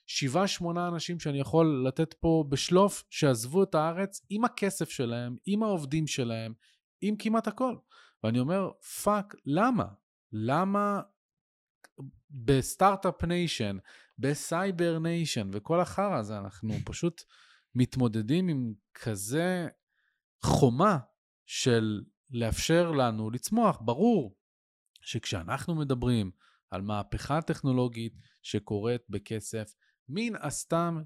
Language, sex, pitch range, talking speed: Hebrew, male, 115-170 Hz, 100 wpm